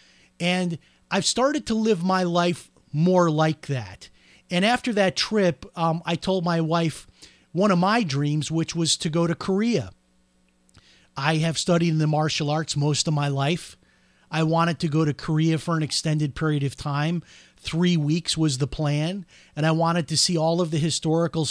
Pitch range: 150-180 Hz